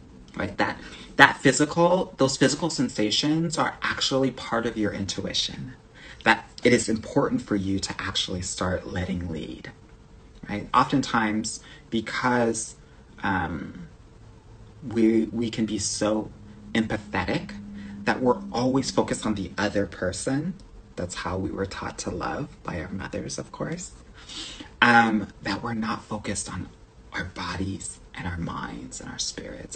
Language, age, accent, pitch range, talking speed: English, 30-49, American, 95-125 Hz, 135 wpm